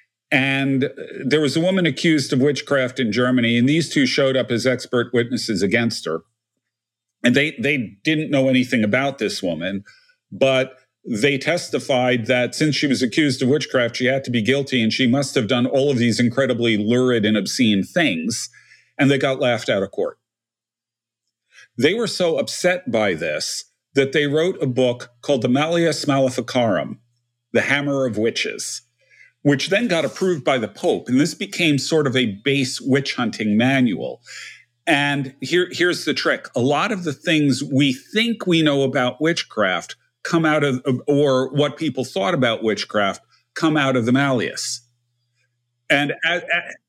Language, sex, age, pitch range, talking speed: English, male, 50-69, 120-150 Hz, 165 wpm